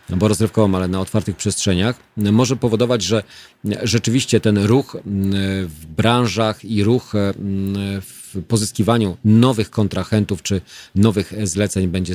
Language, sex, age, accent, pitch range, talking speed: Polish, male, 40-59, native, 95-115 Hz, 120 wpm